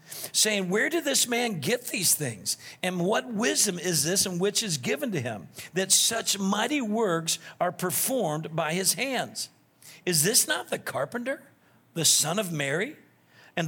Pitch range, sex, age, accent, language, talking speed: 145-195 Hz, male, 50-69, American, English, 165 wpm